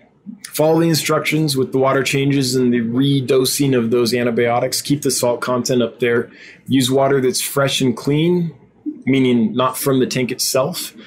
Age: 20-39